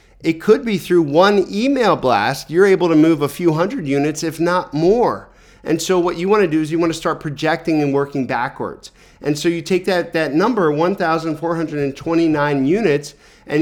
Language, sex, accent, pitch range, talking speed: English, male, American, 140-170 Hz, 195 wpm